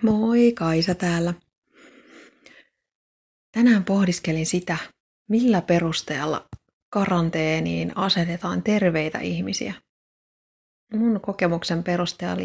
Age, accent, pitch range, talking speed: 30-49, native, 160-190 Hz, 70 wpm